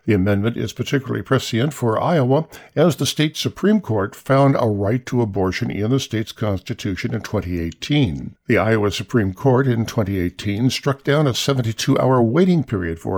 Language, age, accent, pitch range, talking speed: English, 60-79, American, 105-135 Hz, 165 wpm